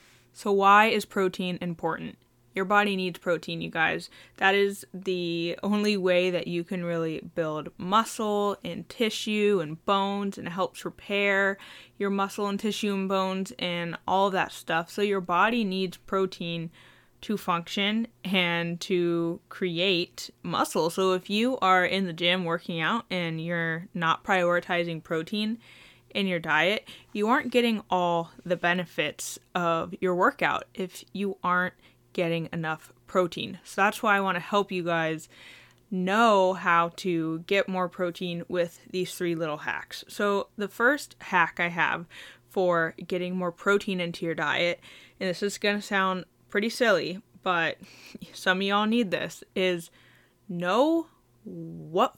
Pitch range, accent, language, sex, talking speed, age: 170-200 Hz, American, English, female, 155 wpm, 10-29